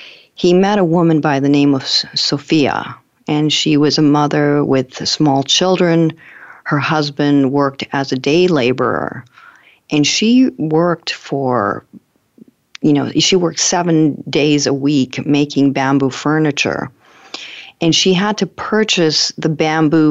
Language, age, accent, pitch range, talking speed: English, 50-69, American, 140-165 Hz, 135 wpm